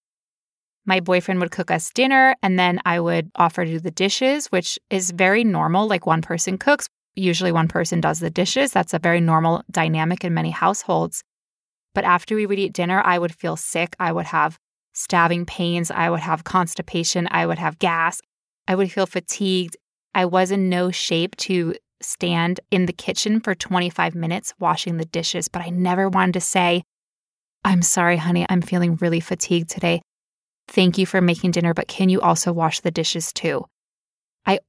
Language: English